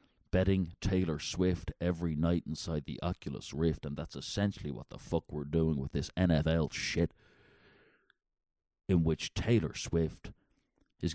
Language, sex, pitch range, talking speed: English, male, 80-105 Hz, 140 wpm